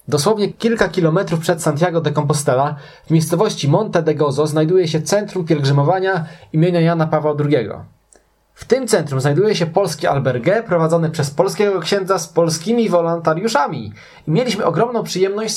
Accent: native